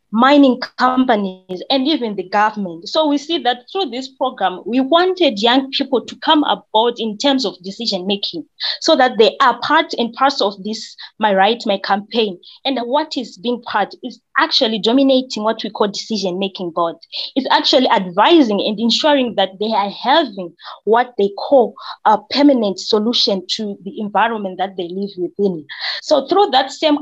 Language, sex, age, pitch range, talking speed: English, female, 20-39, 200-280 Hz, 170 wpm